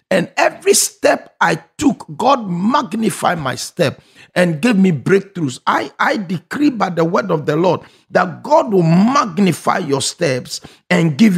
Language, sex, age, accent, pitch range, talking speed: English, male, 50-69, Nigerian, 170-255 Hz, 160 wpm